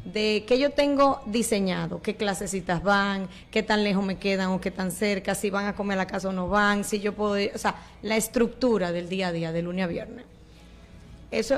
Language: Spanish